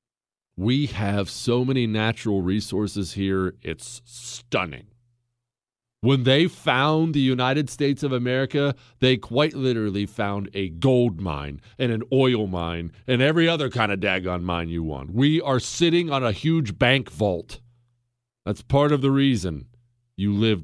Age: 40-59